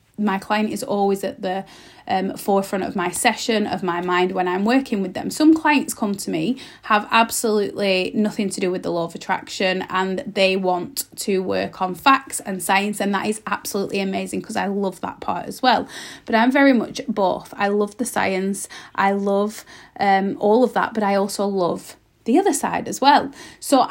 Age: 30-49